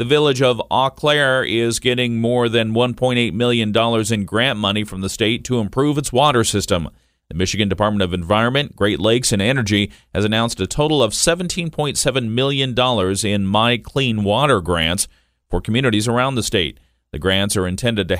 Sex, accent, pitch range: male, American, 100-125 Hz